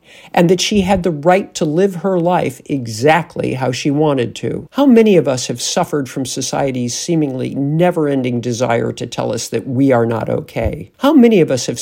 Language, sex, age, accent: English, male, 50-69, American